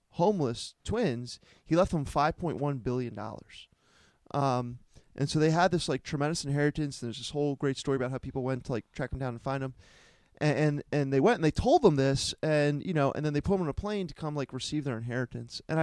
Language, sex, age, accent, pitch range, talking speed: English, male, 20-39, American, 135-180 Hz, 240 wpm